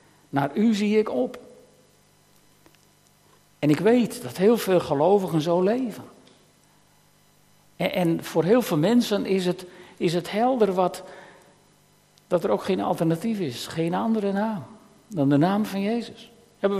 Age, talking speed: 60-79, 150 wpm